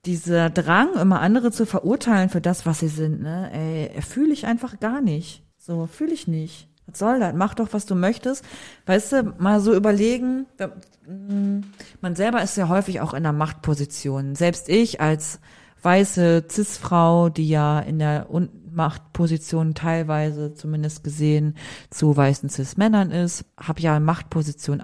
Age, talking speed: 40-59, 155 wpm